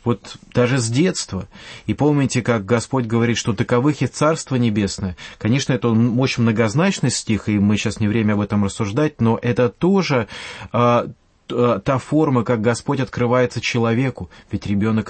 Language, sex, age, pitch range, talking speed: English, male, 30-49, 110-130 Hz, 150 wpm